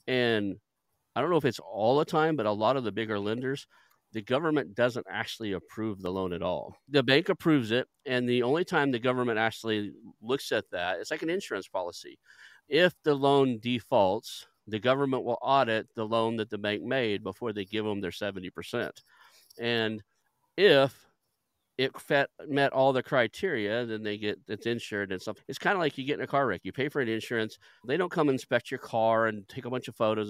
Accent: American